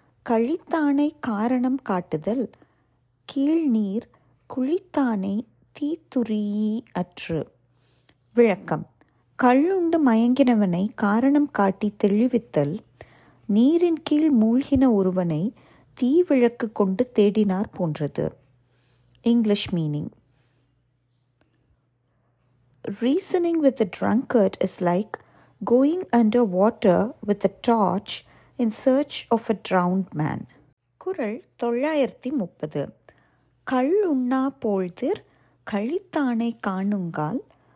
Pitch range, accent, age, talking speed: 180-260 Hz, native, 30-49, 85 wpm